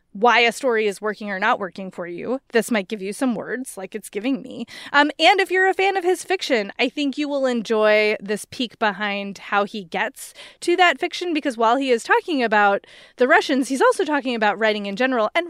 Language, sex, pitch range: English, female, 210-285 Hz